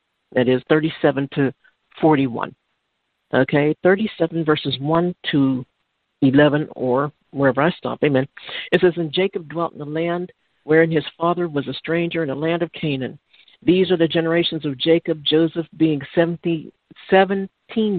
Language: English